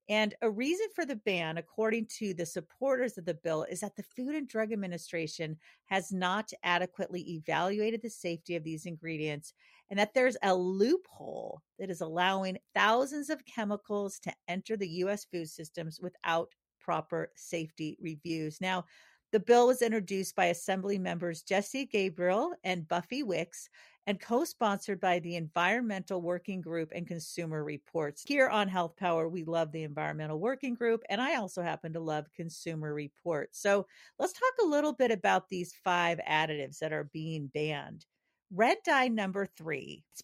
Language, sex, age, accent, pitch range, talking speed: English, female, 40-59, American, 170-225 Hz, 165 wpm